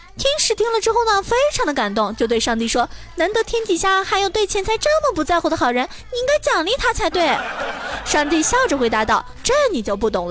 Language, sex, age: Chinese, female, 20-39